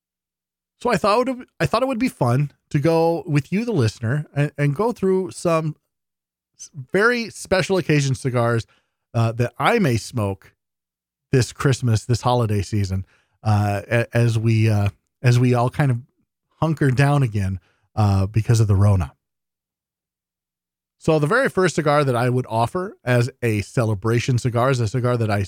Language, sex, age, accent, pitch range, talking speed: English, male, 40-59, American, 105-140 Hz, 160 wpm